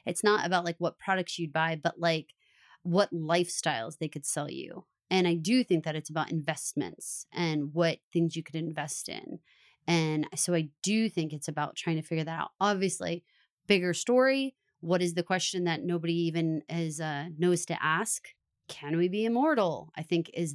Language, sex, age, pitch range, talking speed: English, female, 30-49, 160-190 Hz, 185 wpm